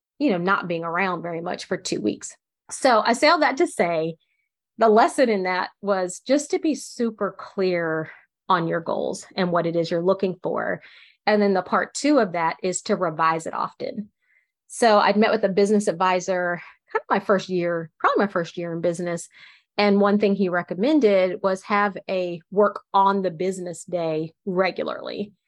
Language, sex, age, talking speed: English, female, 30-49, 190 wpm